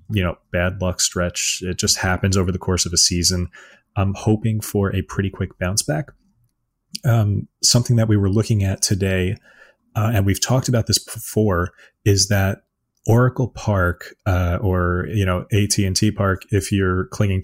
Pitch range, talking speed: 90-110 Hz, 180 wpm